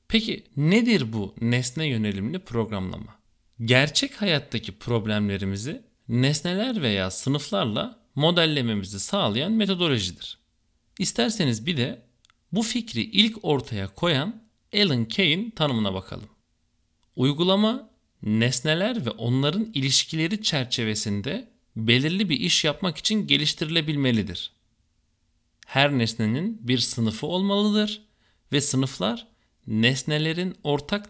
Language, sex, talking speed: Turkish, male, 95 wpm